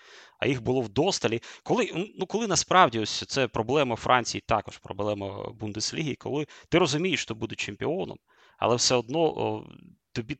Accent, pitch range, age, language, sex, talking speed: native, 110-150 Hz, 30-49, Russian, male, 150 wpm